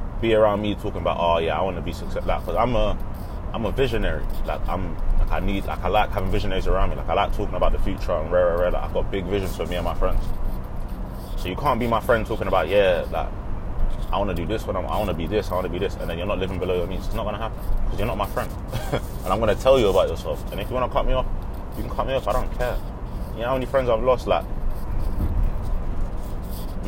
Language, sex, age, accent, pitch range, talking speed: English, male, 20-39, British, 85-110 Hz, 280 wpm